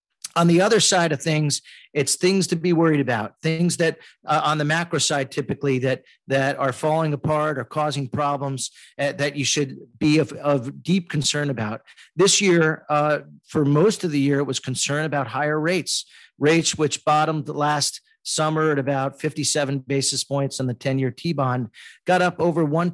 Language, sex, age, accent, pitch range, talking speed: English, male, 40-59, American, 135-160 Hz, 185 wpm